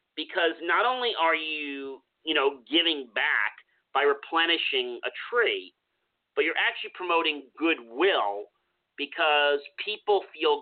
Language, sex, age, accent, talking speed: English, male, 40-59, American, 120 wpm